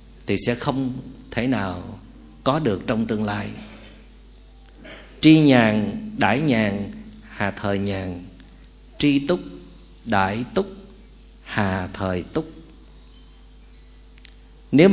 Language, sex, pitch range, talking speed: Vietnamese, male, 105-155 Hz, 100 wpm